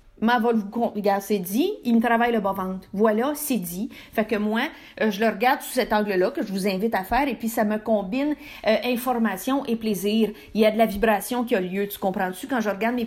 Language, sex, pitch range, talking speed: French, female, 220-280 Hz, 245 wpm